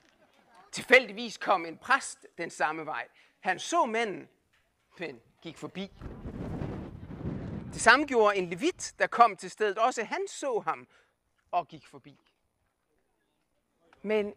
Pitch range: 165-260 Hz